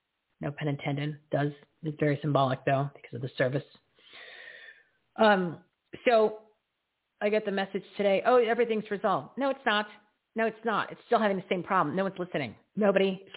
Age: 40-59